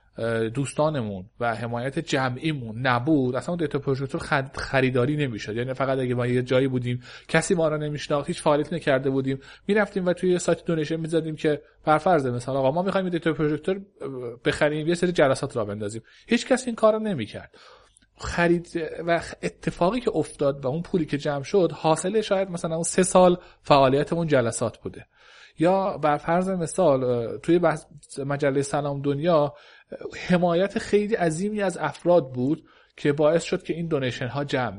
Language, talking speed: Persian, 160 wpm